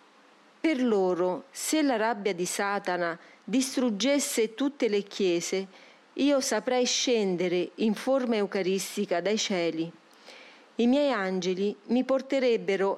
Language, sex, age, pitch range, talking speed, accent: Italian, female, 40-59, 190-245 Hz, 110 wpm, native